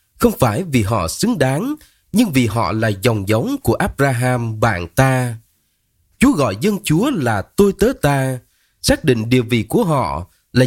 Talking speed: 175 wpm